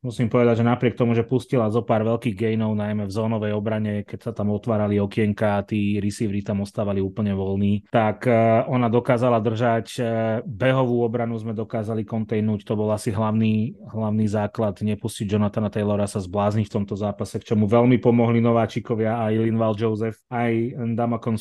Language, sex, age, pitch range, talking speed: Slovak, male, 30-49, 110-120 Hz, 170 wpm